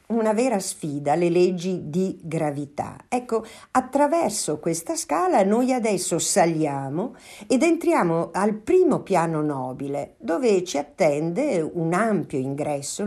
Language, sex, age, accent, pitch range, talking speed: Italian, female, 50-69, native, 150-250 Hz, 120 wpm